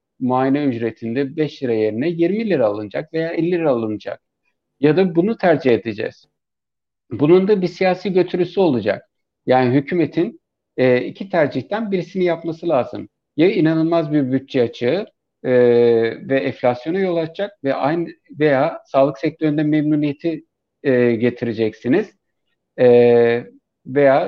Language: Turkish